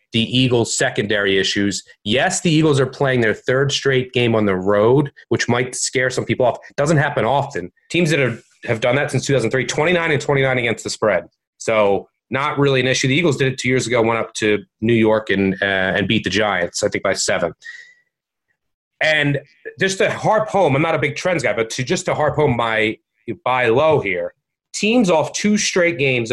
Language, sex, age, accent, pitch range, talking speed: English, male, 30-49, American, 115-150 Hz, 215 wpm